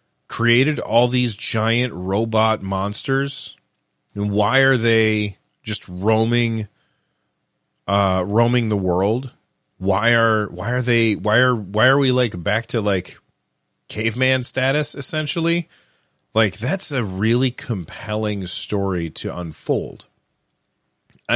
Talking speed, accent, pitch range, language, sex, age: 120 wpm, American, 100-130 Hz, English, male, 30-49